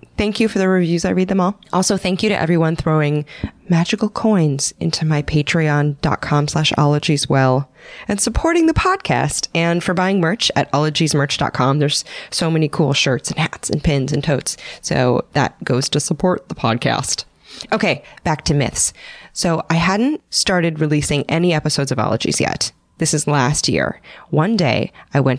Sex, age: female, 20-39